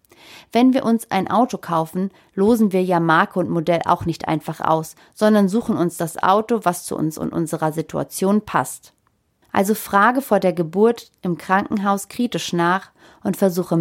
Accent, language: German, German